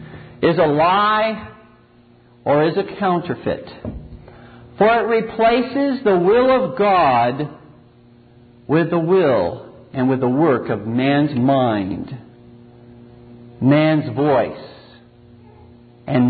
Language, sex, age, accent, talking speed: English, male, 50-69, American, 100 wpm